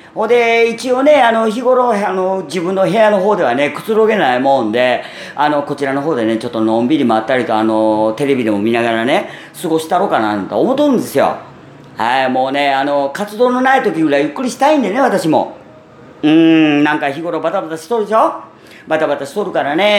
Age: 40-59